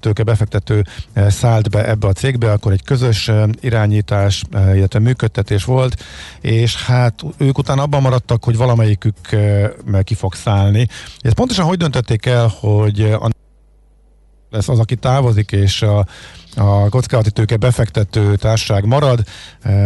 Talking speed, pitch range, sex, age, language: 130 wpm, 100-125 Hz, male, 50-69, Hungarian